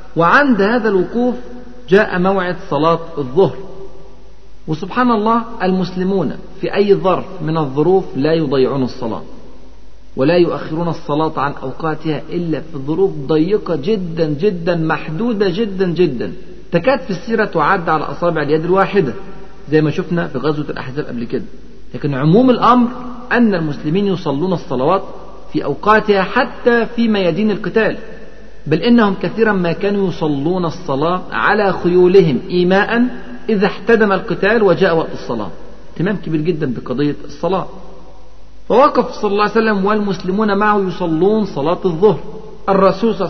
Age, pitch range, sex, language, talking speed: 50-69, 155-205 Hz, male, Arabic, 130 wpm